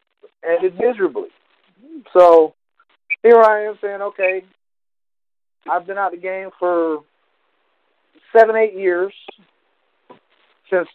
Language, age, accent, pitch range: English, 50-69, American, 155-225 Hz